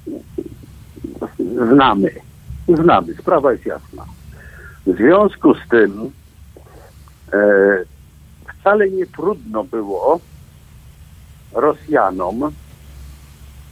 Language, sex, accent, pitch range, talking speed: Polish, male, native, 100-140 Hz, 65 wpm